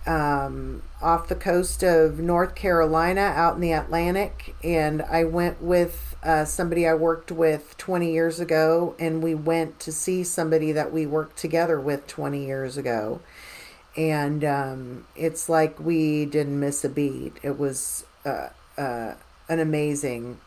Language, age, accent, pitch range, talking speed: English, 40-59, American, 135-170 Hz, 150 wpm